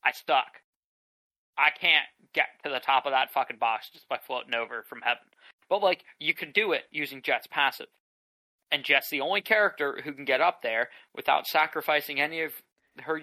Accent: American